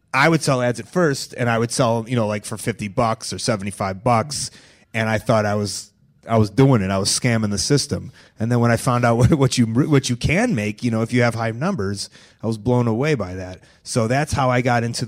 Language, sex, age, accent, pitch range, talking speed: English, male, 30-49, American, 110-140 Hz, 260 wpm